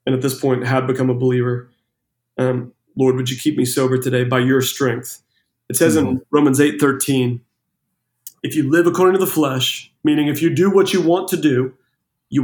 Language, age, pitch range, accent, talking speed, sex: English, 30-49, 135-185 Hz, American, 205 wpm, male